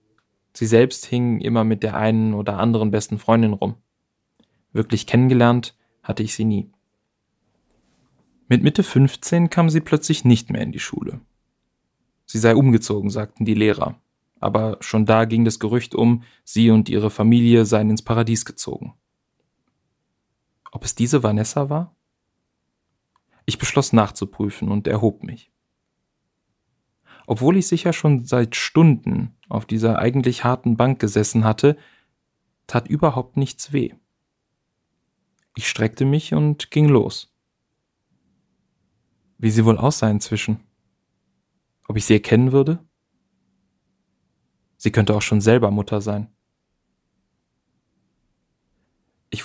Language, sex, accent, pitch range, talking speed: German, male, German, 110-130 Hz, 125 wpm